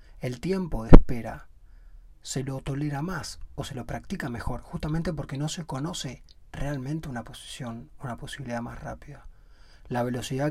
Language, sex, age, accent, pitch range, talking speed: Spanish, male, 30-49, Argentinian, 115-145 Hz, 155 wpm